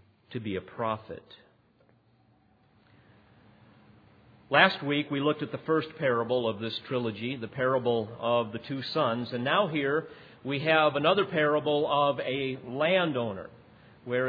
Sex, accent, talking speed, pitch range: male, American, 135 wpm, 115-155 Hz